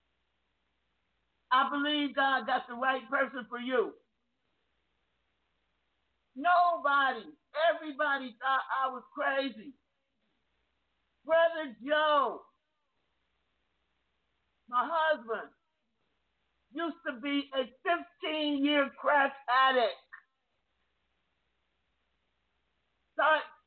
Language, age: English, 50-69